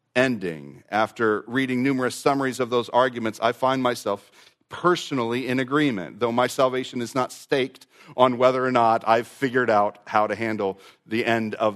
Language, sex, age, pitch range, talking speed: English, male, 40-59, 115-145 Hz, 170 wpm